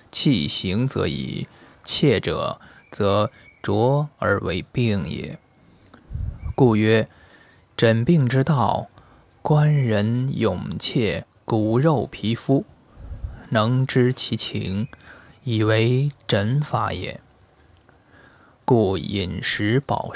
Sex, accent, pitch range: male, native, 105-135 Hz